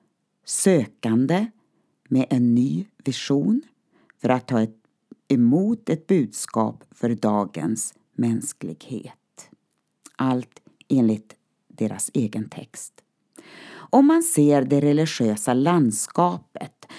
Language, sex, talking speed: Swedish, female, 90 wpm